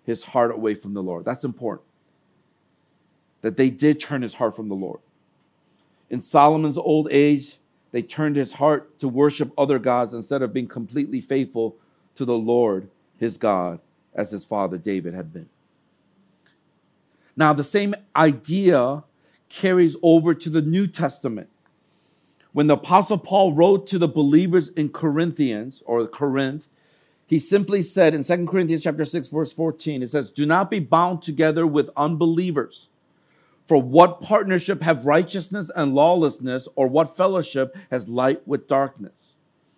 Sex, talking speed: male, 150 wpm